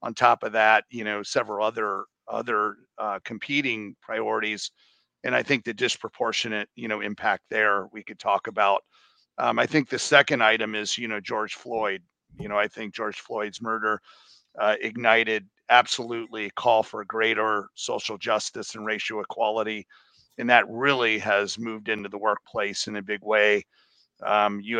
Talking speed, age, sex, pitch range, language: 165 wpm, 50-69, male, 105-115 Hz, English